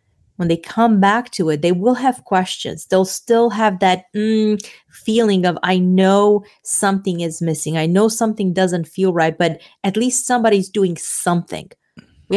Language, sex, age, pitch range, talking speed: English, female, 30-49, 180-215 Hz, 170 wpm